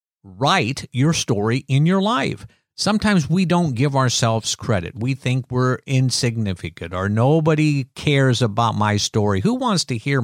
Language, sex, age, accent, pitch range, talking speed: English, male, 50-69, American, 110-150 Hz, 150 wpm